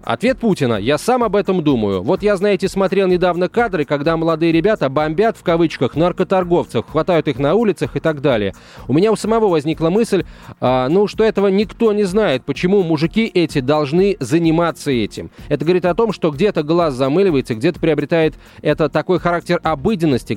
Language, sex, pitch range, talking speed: Russian, male, 120-175 Hz, 175 wpm